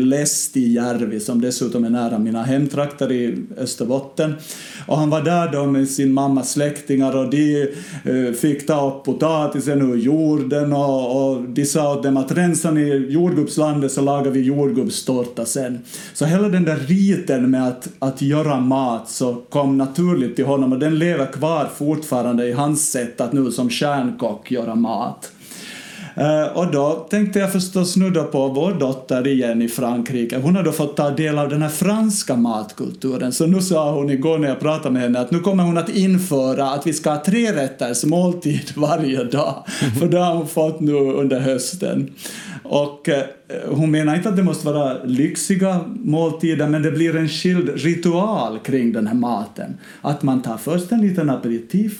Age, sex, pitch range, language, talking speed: 50-69, male, 135-165 Hz, Swedish, 180 wpm